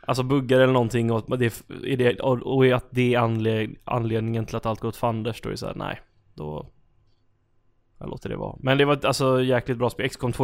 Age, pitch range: 20-39, 115-130 Hz